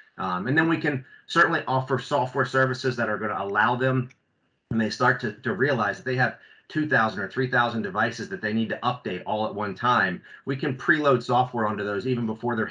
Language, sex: English, male